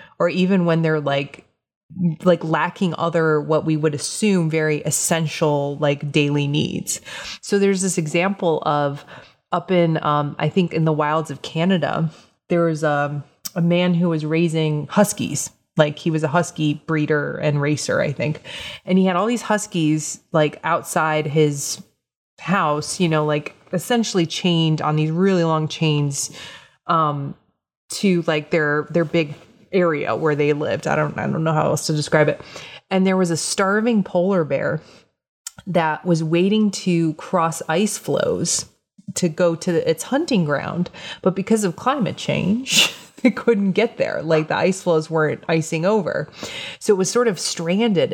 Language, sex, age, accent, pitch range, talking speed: English, female, 30-49, American, 155-185 Hz, 165 wpm